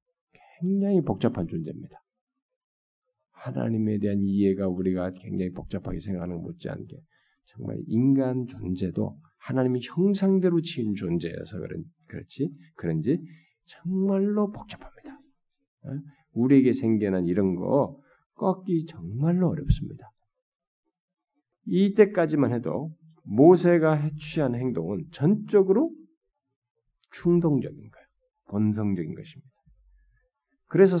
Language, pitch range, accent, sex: Korean, 120-185 Hz, native, male